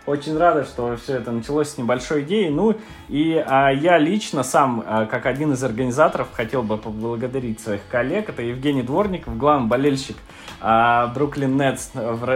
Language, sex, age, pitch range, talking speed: Russian, male, 20-39, 120-150 Hz, 165 wpm